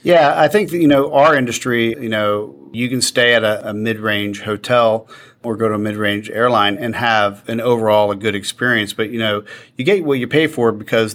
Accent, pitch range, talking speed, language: American, 105-120 Hz, 215 wpm, English